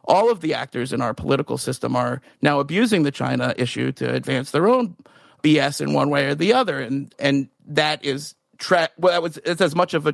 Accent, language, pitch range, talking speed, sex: American, English, 145-180 Hz, 225 wpm, male